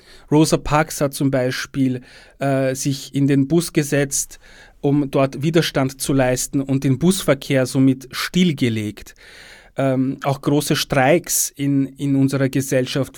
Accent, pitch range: Austrian, 135-175 Hz